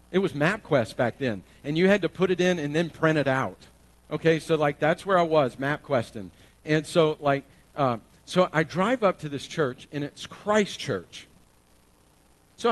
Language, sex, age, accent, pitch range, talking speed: English, male, 50-69, American, 115-175 Hz, 195 wpm